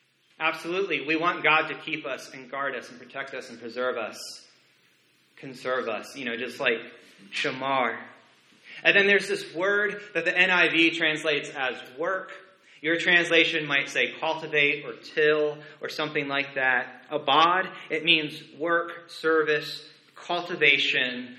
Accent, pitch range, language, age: American, 150-195 Hz, English, 30-49